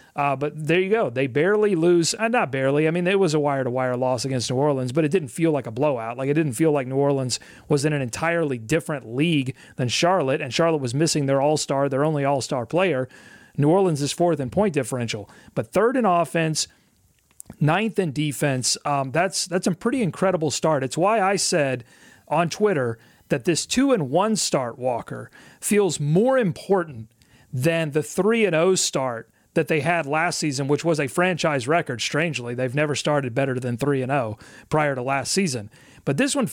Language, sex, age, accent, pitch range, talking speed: English, male, 40-59, American, 135-185 Hz, 195 wpm